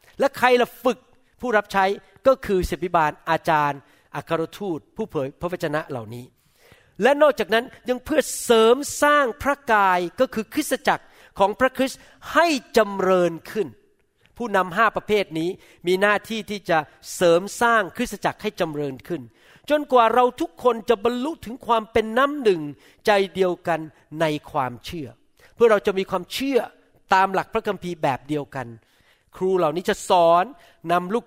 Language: Thai